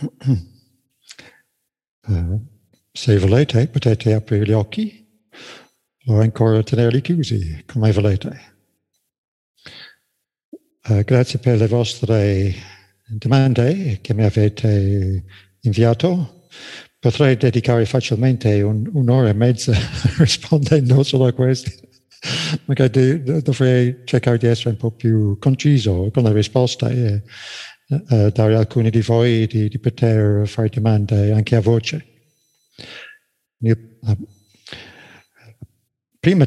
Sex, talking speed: male, 95 wpm